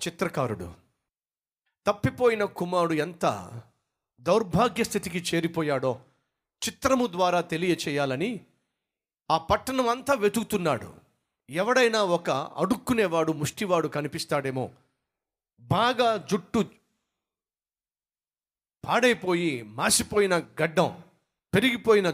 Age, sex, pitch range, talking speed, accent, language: 40-59, male, 155-220 Hz, 70 wpm, native, Telugu